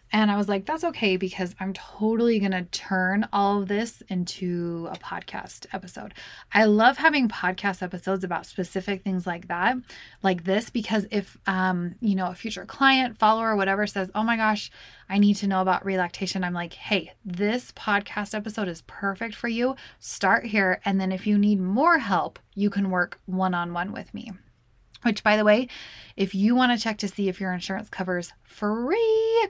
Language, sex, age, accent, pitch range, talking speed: English, female, 10-29, American, 190-225 Hz, 190 wpm